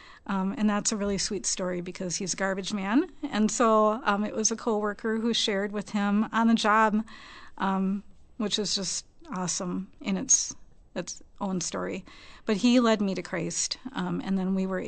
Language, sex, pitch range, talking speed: English, female, 185-225 Hz, 190 wpm